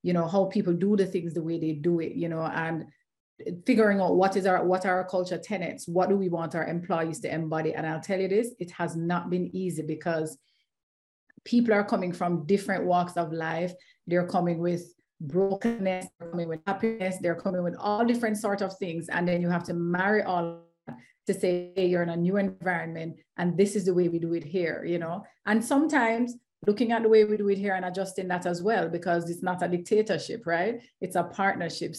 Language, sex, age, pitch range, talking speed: English, female, 30-49, 170-200 Hz, 225 wpm